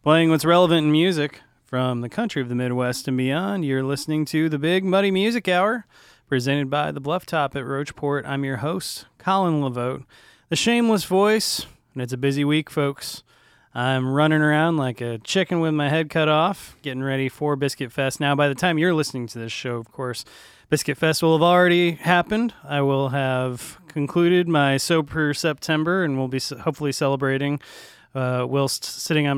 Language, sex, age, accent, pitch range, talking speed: English, male, 30-49, American, 135-165 Hz, 185 wpm